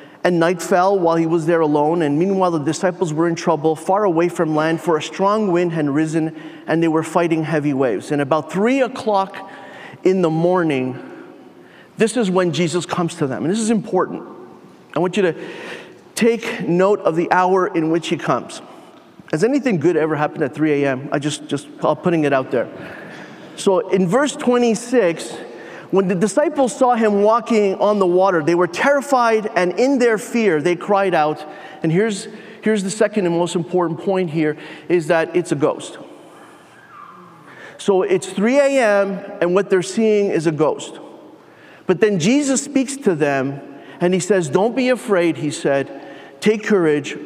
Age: 30-49